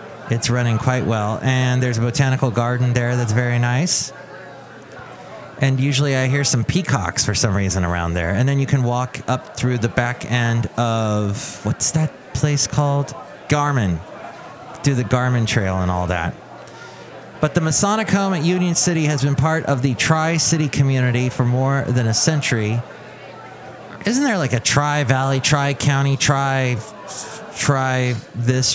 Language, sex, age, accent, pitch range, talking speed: English, male, 30-49, American, 115-145 Hz, 150 wpm